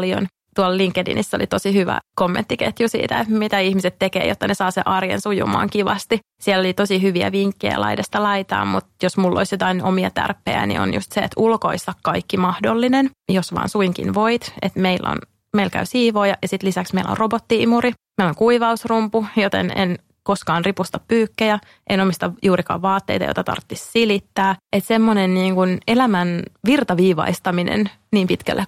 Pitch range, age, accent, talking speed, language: 180-215 Hz, 30-49, Finnish, 165 wpm, English